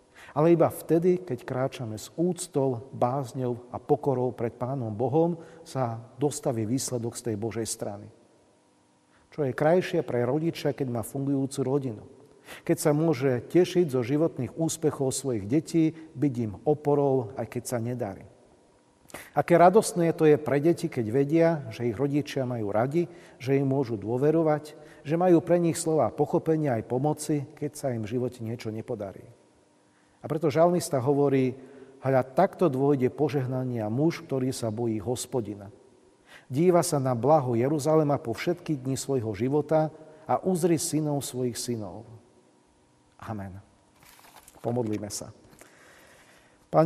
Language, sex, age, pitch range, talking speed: Slovak, male, 50-69, 120-155 Hz, 140 wpm